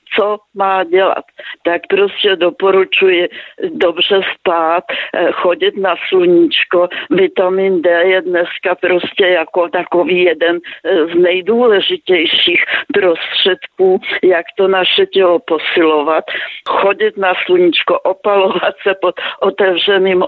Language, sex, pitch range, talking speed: Slovak, female, 175-210 Hz, 100 wpm